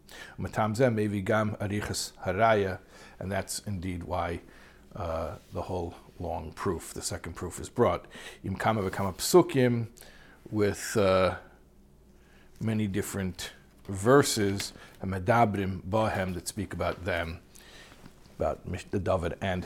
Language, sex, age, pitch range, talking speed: English, male, 50-69, 90-105 Hz, 80 wpm